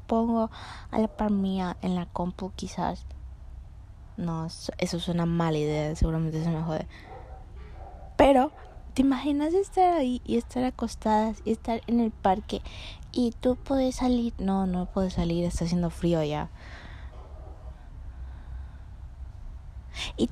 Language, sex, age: Spanish, female, 20-39